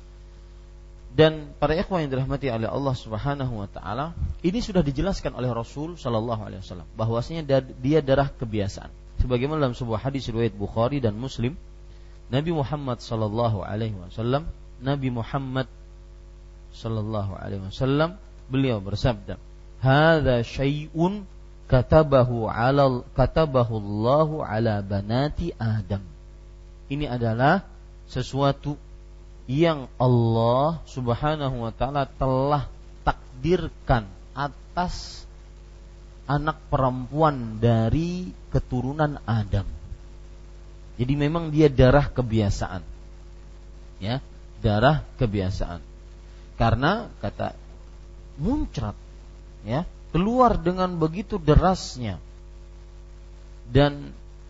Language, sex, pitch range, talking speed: Malay, male, 85-140 Hz, 90 wpm